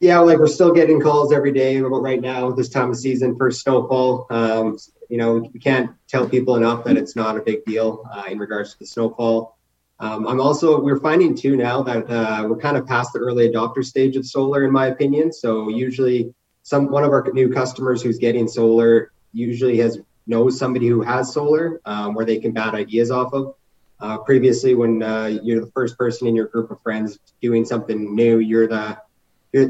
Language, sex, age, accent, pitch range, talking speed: English, male, 20-39, American, 110-130 Hz, 210 wpm